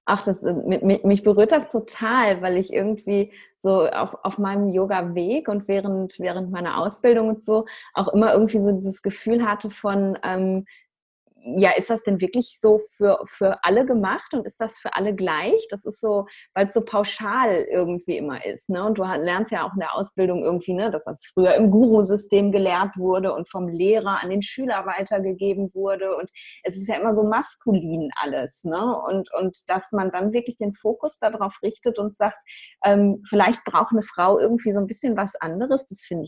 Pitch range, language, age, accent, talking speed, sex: 180-215 Hz, German, 20-39, German, 190 wpm, female